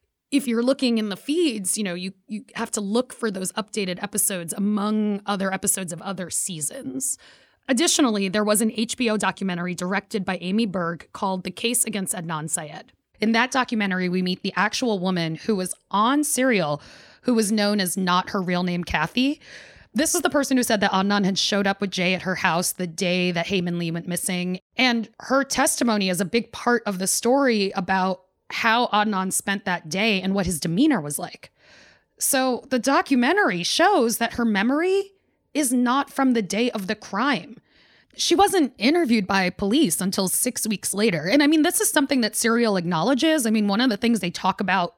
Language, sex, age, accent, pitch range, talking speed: English, female, 20-39, American, 185-245 Hz, 195 wpm